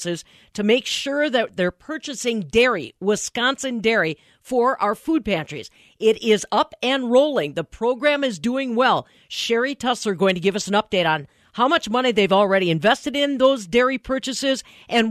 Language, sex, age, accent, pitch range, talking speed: English, female, 40-59, American, 185-260 Hz, 175 wpm